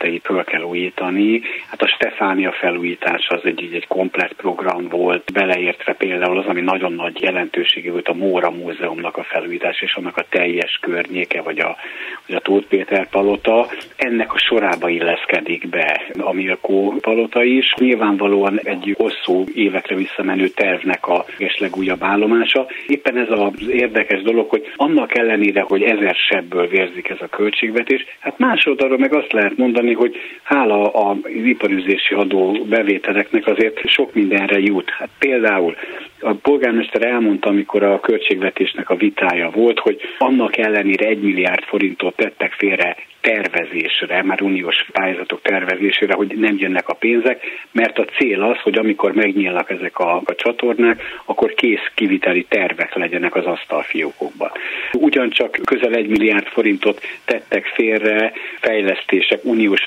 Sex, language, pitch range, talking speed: male, Hungarian, 90-115 Hz, 140 wpm